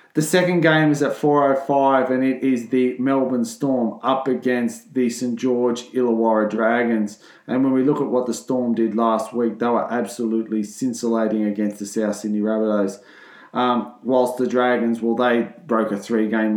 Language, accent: English, Australian